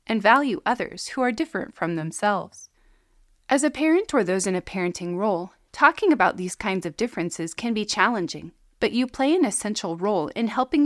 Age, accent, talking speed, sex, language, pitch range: 30-49, American, 190 wpm, female, English, 180-260 Hz